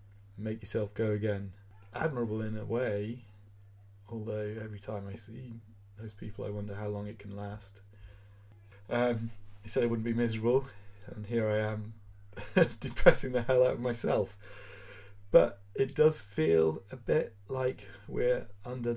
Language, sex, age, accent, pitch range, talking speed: English, male, 30-49, British, 100-115 Hz, 150 wpm